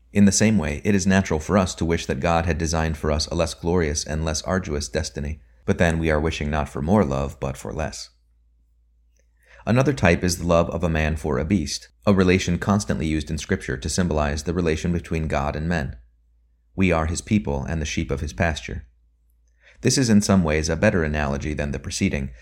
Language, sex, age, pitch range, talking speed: English, male, 30-49, 70-95 Hz, 220 wpm